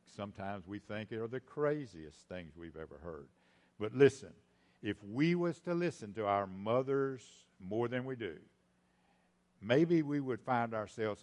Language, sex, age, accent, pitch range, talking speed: English, male, 60-79, American, 95-130 Hz, 160 wpm